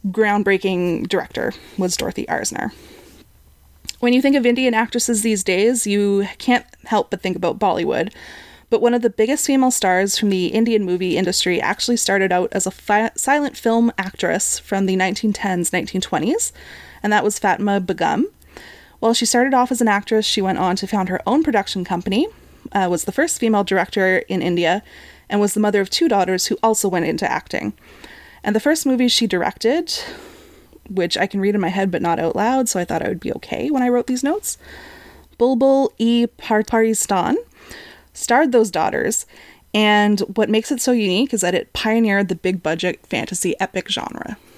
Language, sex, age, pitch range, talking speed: English, female, 20-39, 185-235 Hz, 185 wpm